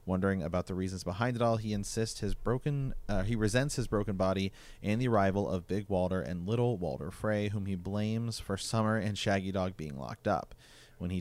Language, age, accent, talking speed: English, 30-49, American, 210 wpm